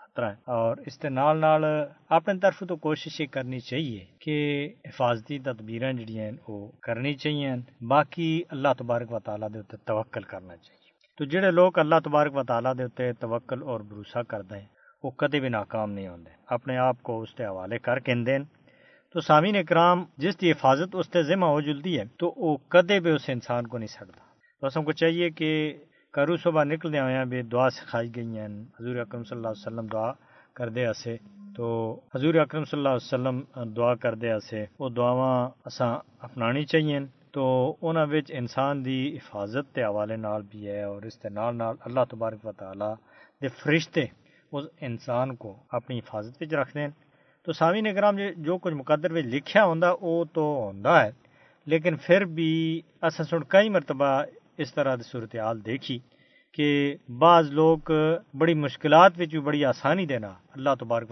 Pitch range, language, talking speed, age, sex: 120-160 Hz, Urdu, 170 wpm, 50-69, male